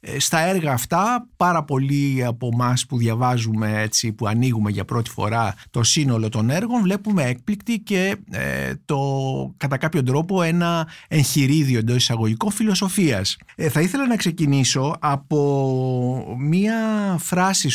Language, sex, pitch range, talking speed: Greek, male, 125-165 Hz, 135 wpm